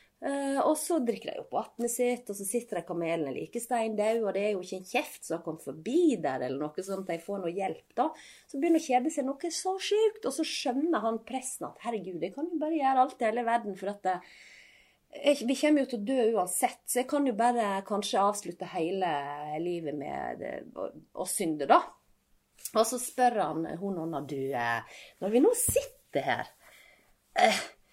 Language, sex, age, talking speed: English, female, 30-49, 195 wpm